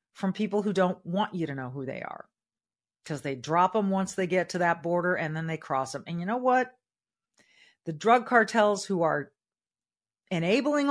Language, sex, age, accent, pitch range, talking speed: English, female, 50-69, American, 160-230 Hz, 200 wpm